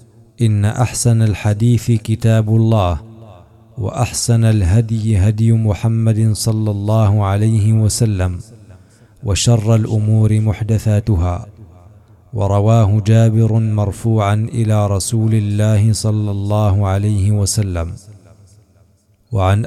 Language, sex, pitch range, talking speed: Arabic, male, 105-115 Hz, 80 wpm